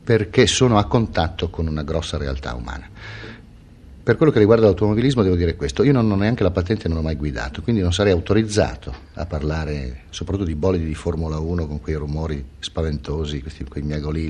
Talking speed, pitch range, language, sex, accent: 195 wpm, 80-100 Hz, Italian, male, native